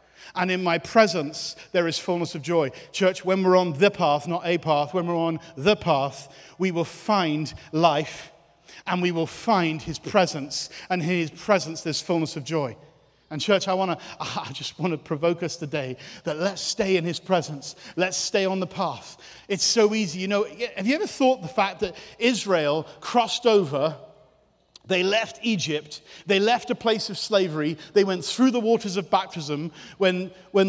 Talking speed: 190 wpm